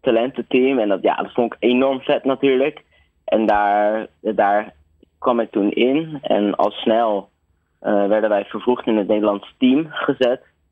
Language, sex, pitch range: Dutch, male, 95-125 Hz